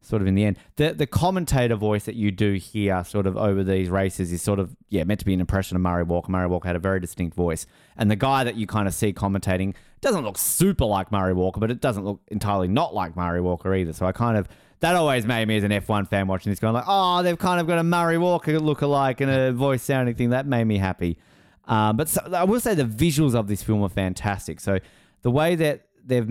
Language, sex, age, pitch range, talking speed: English, male, 20-39, 95-135 Hz, 260 wpm